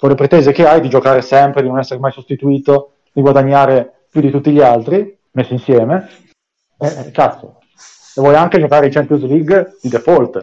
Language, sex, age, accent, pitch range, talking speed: Italian, male, 30-49, native, 125-155 Hz, 190 wpm